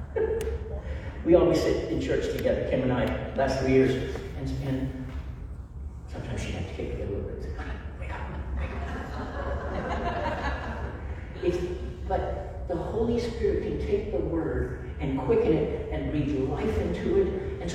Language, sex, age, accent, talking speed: English, male, 50-69, American, 165 wpm